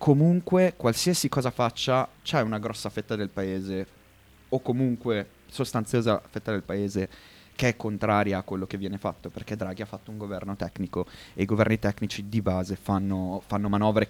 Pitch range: 100-120 Hz